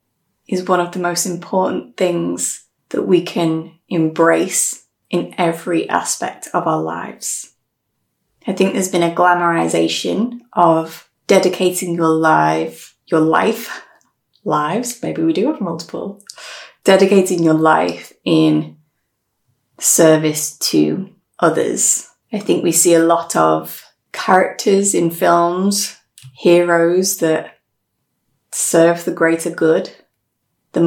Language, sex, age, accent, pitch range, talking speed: English, female, 20-39, British, 160-195 Hz, 115 wpm